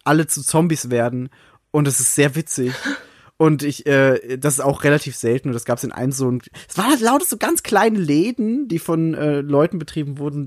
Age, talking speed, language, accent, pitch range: 30-49, 225 wpm, German, German, 125-160 Hz